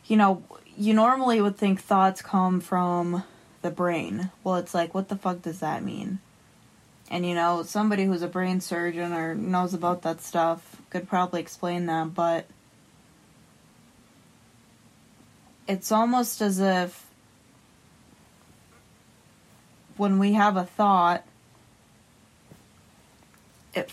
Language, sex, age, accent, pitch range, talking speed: English, female, 20-39, American, 175-195 Hz, 120 wpm